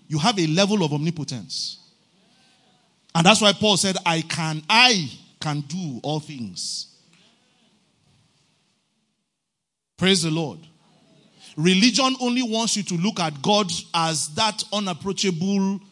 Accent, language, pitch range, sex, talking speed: Nigerian, English, 155-210 Hz, male, 120 wpm